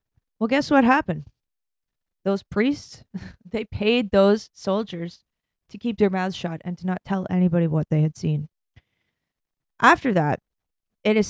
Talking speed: 150 wpm